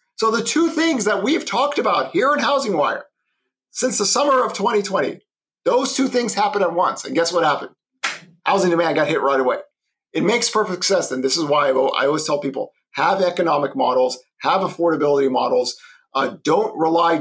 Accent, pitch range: American, 150-215 Hz